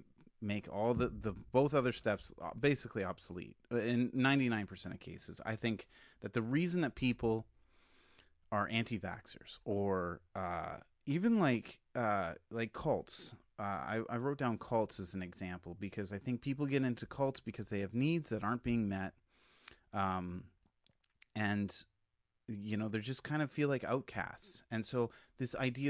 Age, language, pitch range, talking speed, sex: 30-49, English, 95-120 Hz, 160 wpm, male